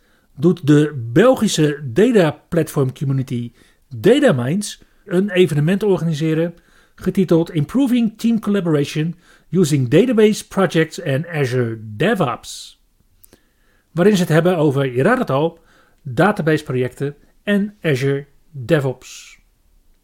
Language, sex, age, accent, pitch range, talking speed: Dutch, male, 40-59, Dutch, 140-195 Hz, 95 wpm